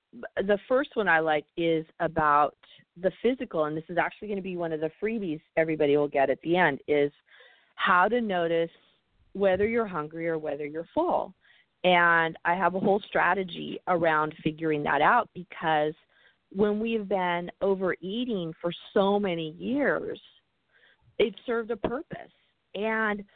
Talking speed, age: 155 wpm, 40-59